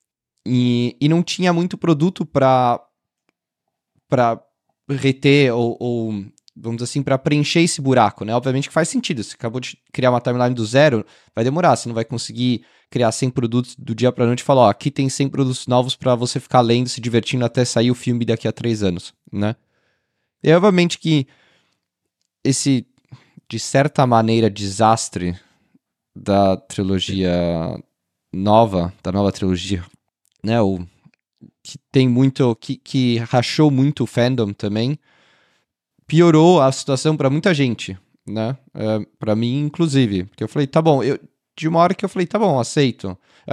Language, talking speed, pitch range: Portuguese, 165 wpm, 115-140 Hz